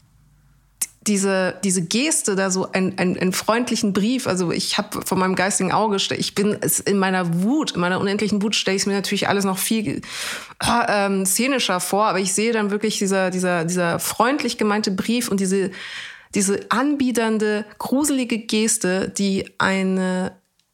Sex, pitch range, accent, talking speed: female, 185-215 Hz, German, 160 wpm